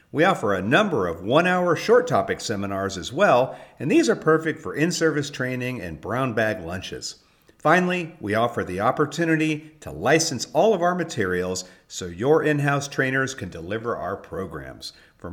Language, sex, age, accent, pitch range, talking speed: English, male, 50-69, American, 95-155 Hz, 165 wpm